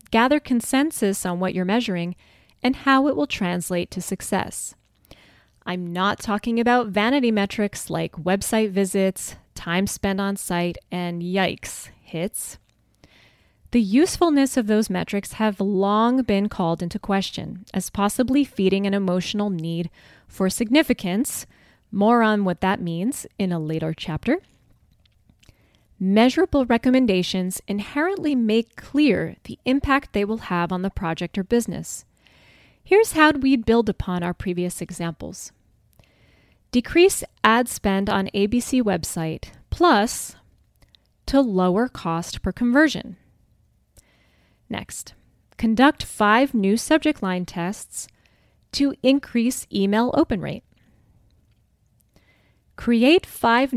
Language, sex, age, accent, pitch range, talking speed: English, female, 20-39, American, 180-245 Hz, 120 wpm